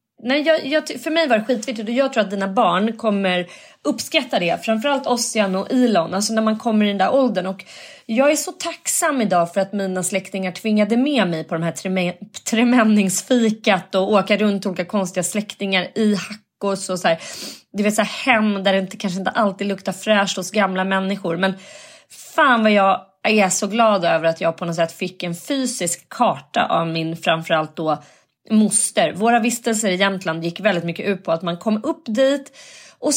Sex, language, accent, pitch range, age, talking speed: female, Swedish, native, 190-260 Hz, 30-49, 195 wpm